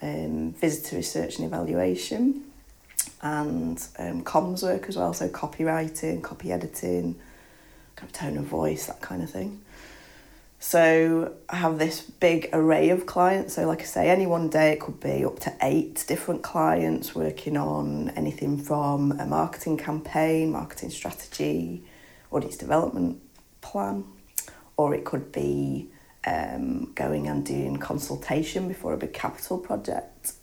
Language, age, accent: English, 30-49, British